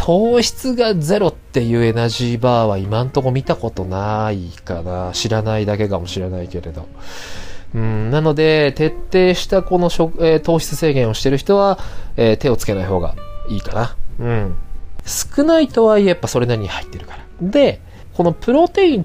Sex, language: male, Japanese